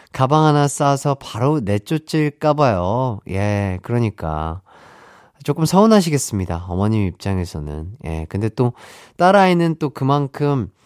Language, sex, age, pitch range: Korean, male, 30-49, 105-150 Hz